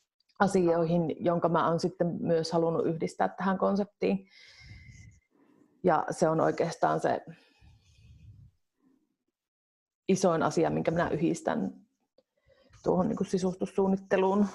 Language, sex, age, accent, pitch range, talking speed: Finnish, female, 30-49, native, 175-200 Hz, 85 wpm